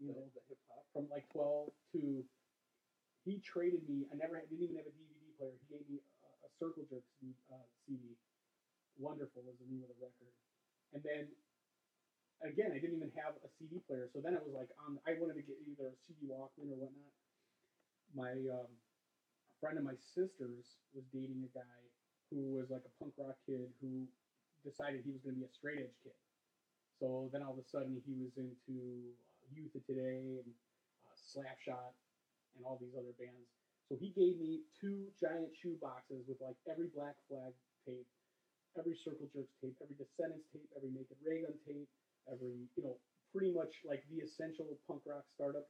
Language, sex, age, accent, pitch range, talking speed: English, male, 30-49, American, 130-155 Hz, 195 wpm